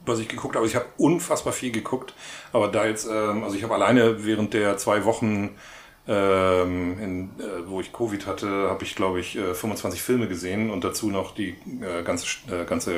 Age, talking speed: 30-49, 200 wpm